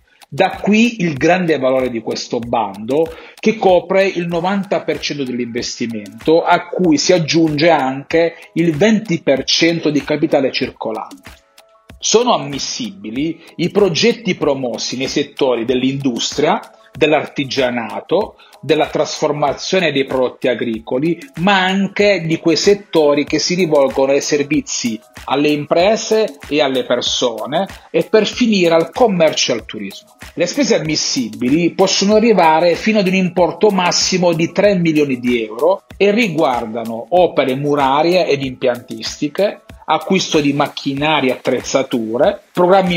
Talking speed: 120 wpm